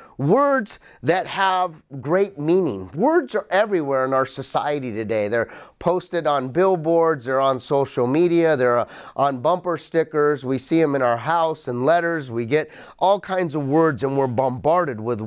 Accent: American